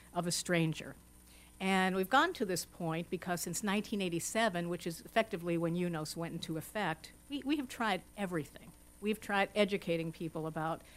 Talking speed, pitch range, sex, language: 165 wpm, 165-190 Hz, female, English